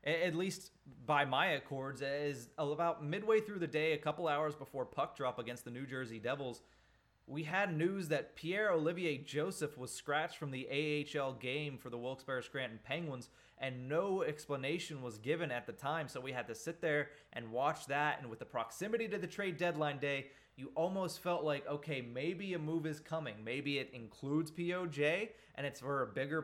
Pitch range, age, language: 135-170 Hz, 20-39, English